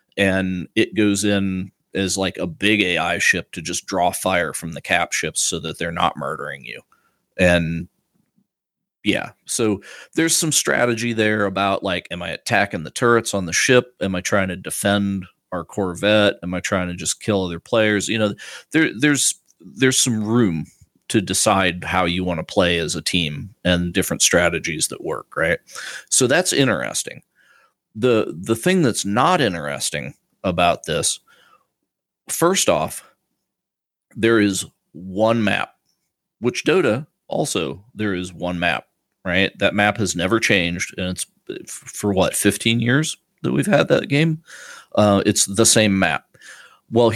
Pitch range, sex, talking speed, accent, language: 90-115 Hz, male, 160 wpm, American, English